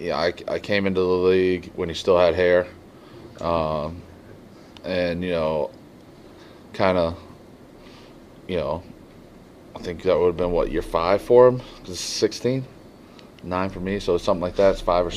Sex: male